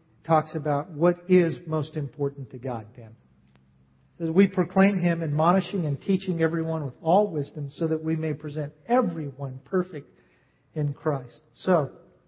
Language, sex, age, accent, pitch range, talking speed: English, male, 50-69, American, 135-170 Hz, 145 wpm